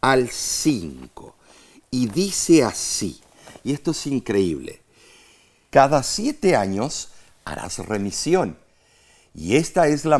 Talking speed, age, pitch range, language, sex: 105 wpm, 50-69, 110-170 Hz, Spanish, male